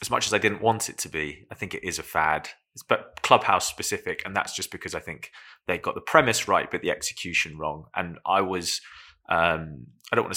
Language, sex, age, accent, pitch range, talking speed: English, male, 20-39, British, 95-135 Hz, 230 wpm